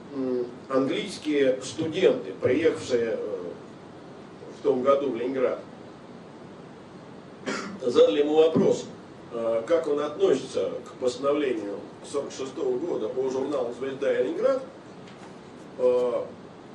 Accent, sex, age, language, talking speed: native, male, 40-59, Russian, 80 wpm